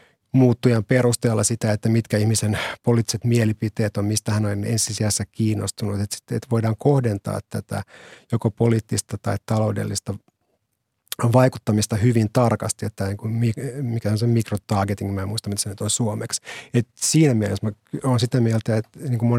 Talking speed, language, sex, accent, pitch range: 140 wpm, Finnish, male, native, 105-120 Hz